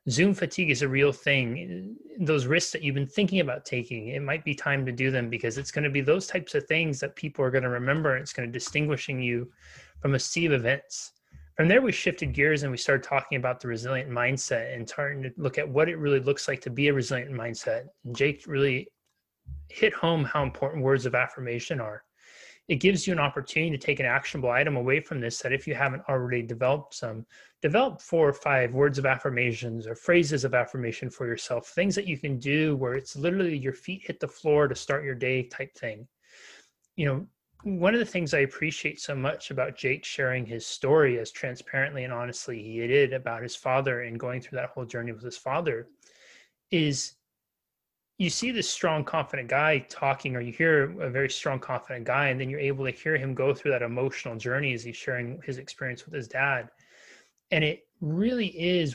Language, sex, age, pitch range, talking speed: English, male, 30-49, 125-155 Hz, 215 wpm